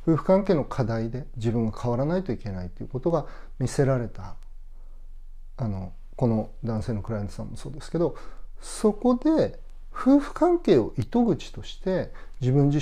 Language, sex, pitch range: Japanese, male, 100-165 Hz